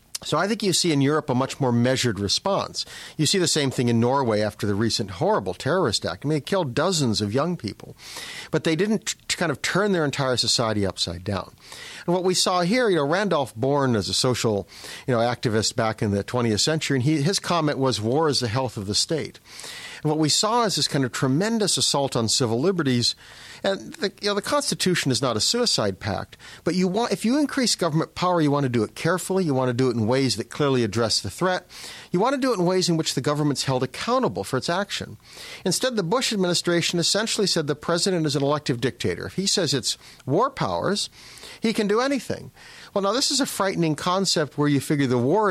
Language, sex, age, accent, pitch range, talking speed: English, male, 50-69, American, 125-180 Hz, 230 wpm